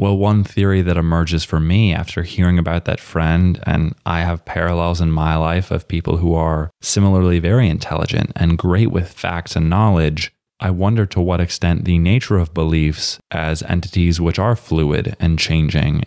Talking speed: 180 wpm